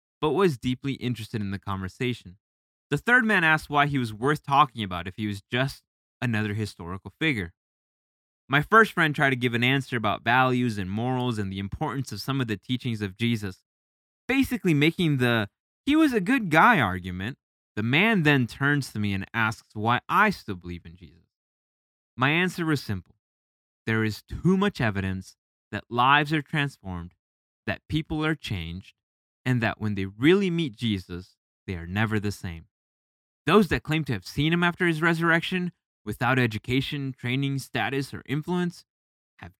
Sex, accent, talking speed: male, American, 175 wpm